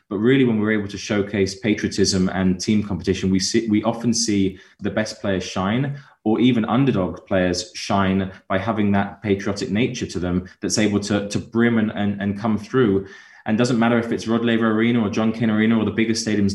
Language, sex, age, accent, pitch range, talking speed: English, male, 20-39, British, 95-110 Hz, 210 wpm